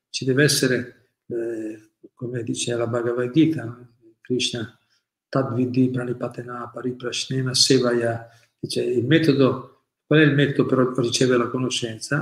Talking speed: 125 wpm